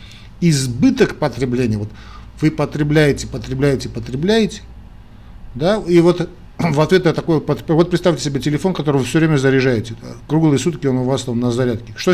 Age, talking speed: 50-69, 160 wpm